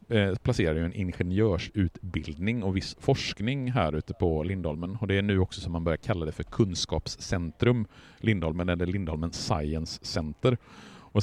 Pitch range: 85-105 Hz